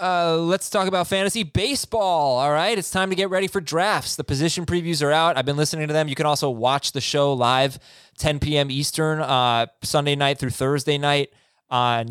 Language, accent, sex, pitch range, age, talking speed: English, American, male, 125-160 Hz, 20-39, 210 wpm